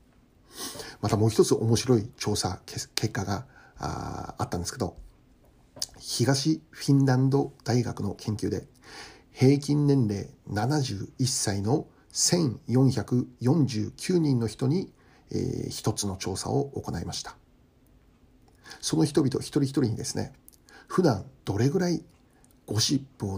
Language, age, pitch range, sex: Japanese, 60-79, 105-135 Hz, male